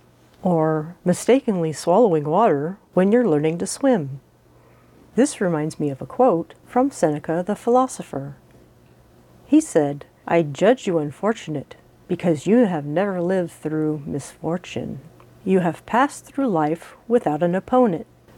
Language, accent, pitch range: English, American, 150-220 Hz